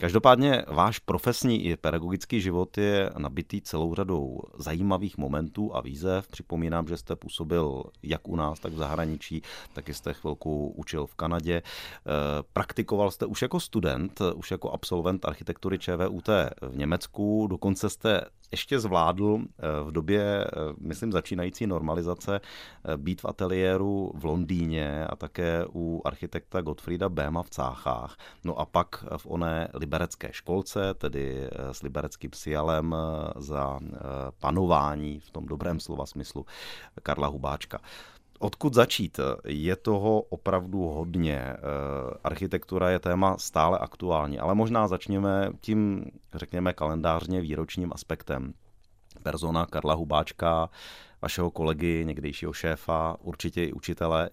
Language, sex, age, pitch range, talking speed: Czech, male, 30-49, 75-95 Hz, 125 wpm